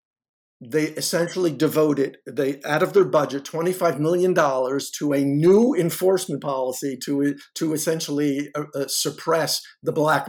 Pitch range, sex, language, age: 150-190 Hz, male, English, 50-69